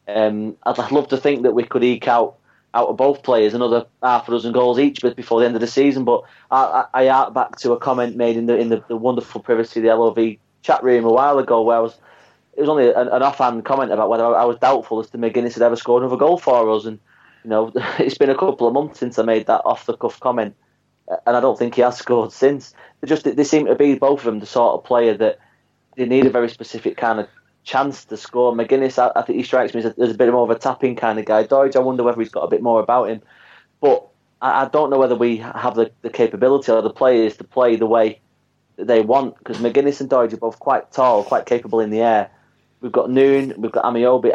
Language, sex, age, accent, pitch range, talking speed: English, male, 30-49, British, 115-130 Hz, 265 wpm